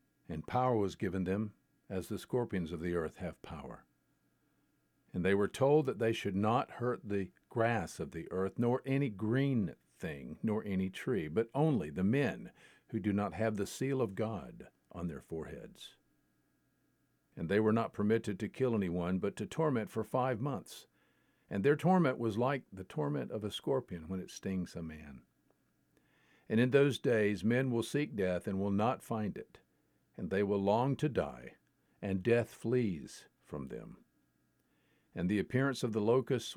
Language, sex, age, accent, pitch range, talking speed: English, male, 50-69, American, 95-125 Hz, 175 wpm